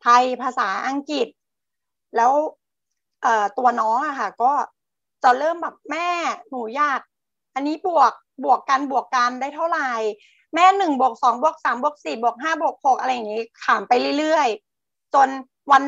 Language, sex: Thai, female